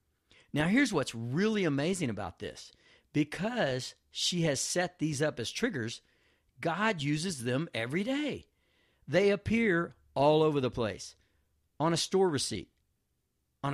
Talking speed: 135 wpm